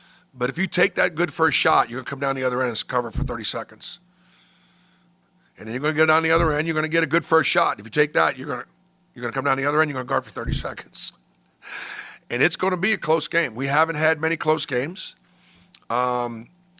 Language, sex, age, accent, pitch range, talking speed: English, male, 50-69, American, 130-170 Hz, 245 wpm